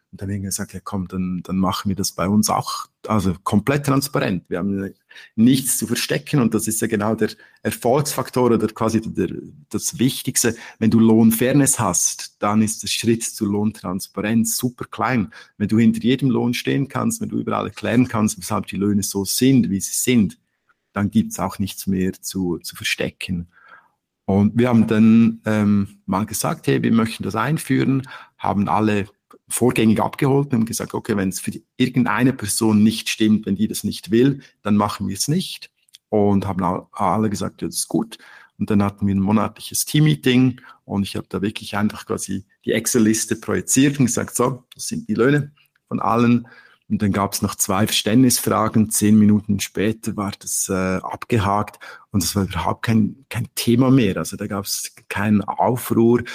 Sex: male